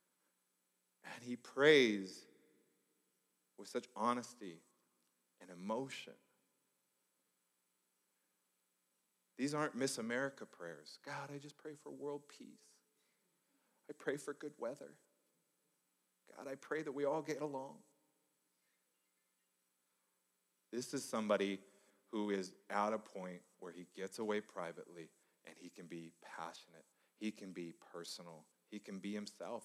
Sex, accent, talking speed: male, American, 120 wpm